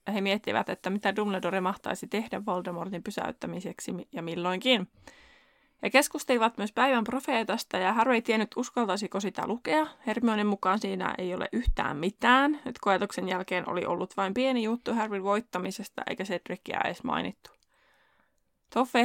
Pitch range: 185-235 Hz